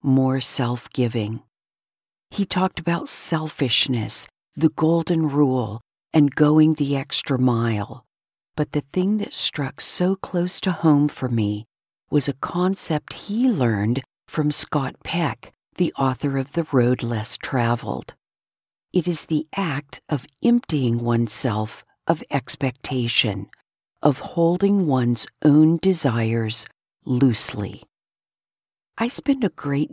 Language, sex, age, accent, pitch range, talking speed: English, female, 50-69, American, 125-175 Hz, 120 wpm